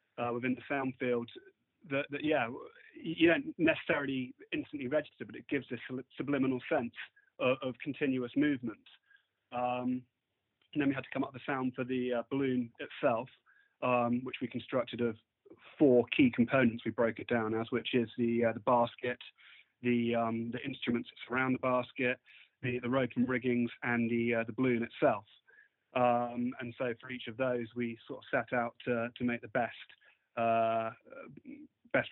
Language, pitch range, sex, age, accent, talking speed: English, 120-130 Hz, male, 30-49, British, 175 wpm